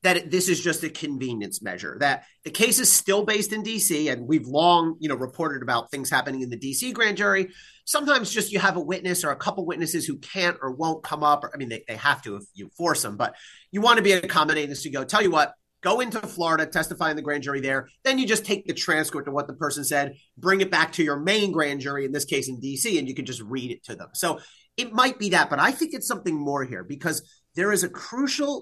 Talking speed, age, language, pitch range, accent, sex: 265 wpm, 30-49, English, 145-210 Hz, American, male